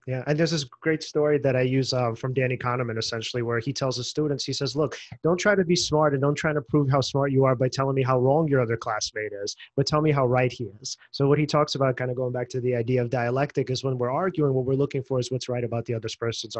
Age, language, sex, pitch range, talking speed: 30-49, English, male, 130-165 Hz, 295 wpm